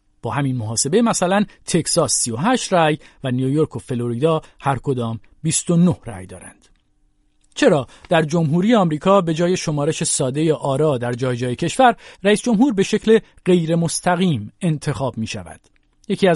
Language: Persian